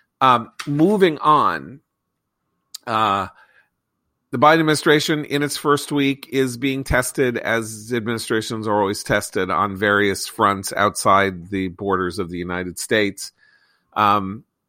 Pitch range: 95-115 Hz